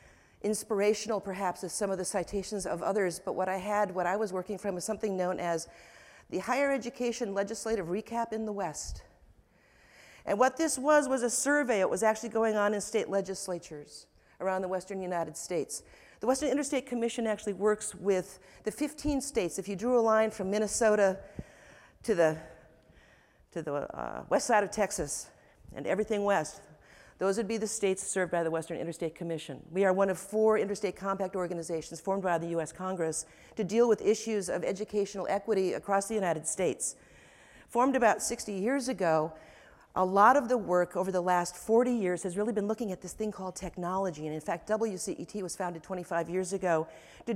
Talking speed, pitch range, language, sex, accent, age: 190 wpm, 180-220 Hz, English, female, American, 50-69